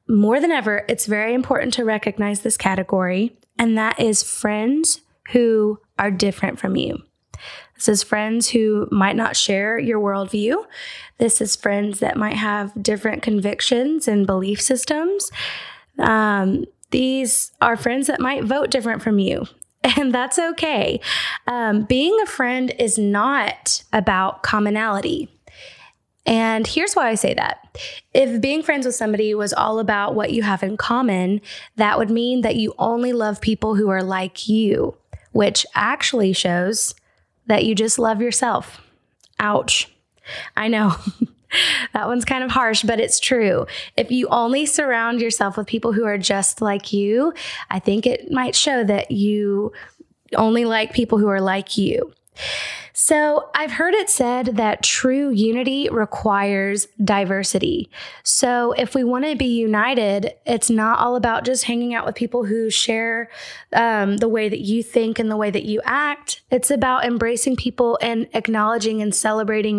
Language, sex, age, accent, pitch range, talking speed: English, female, 20-39, American, 210-250 Hz, 160 wpm